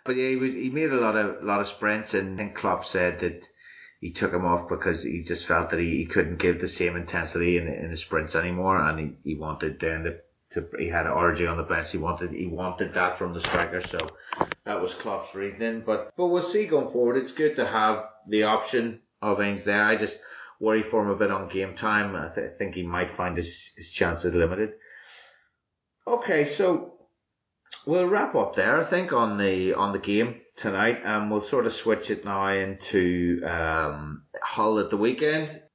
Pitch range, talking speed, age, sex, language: 90-120 Hz, 210 wpm, 30-49, male, English